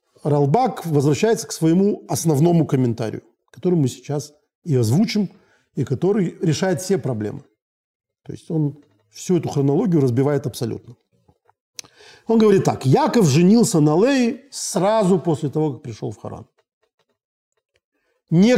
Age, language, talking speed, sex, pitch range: 50-69, Russian, 125 wpm, male, 135-210 Hz